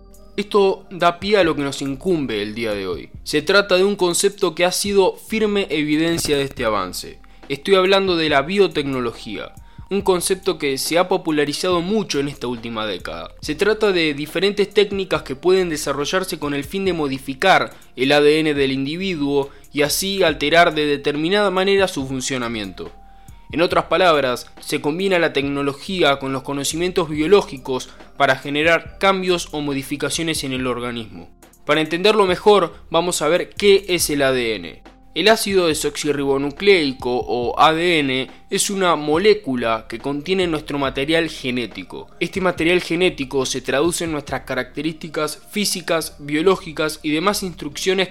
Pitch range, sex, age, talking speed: 135-185 Hz, male, 20-39, 150 wpm